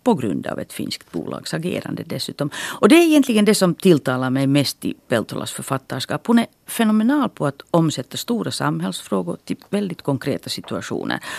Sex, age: female, 50-69